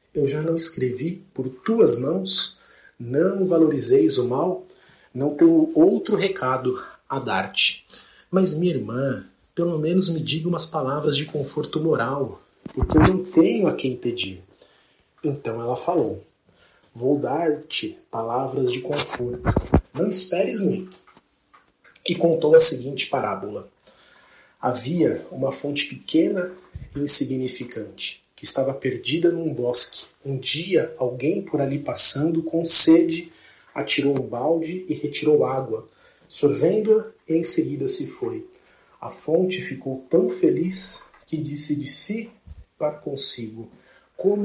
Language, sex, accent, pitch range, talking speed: Portuguese, male, Brazilian, 130-170 Hz, 130 wpm